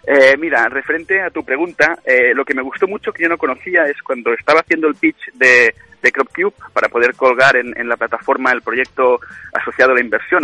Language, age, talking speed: Spanish, 30-49, 220 wpm